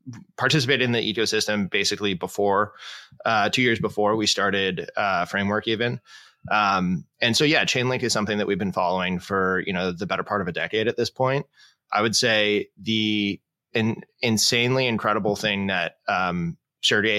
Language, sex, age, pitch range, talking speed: English, male, 20-39, 100-115 Hz, 170 wpm